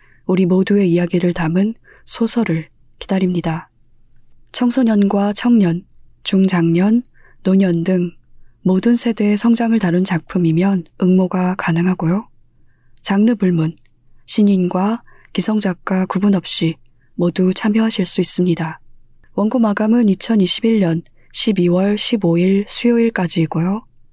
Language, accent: Korean, native